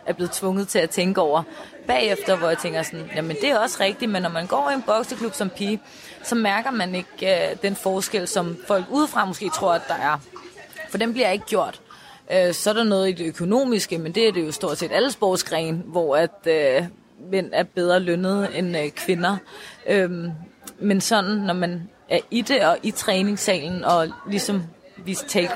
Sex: female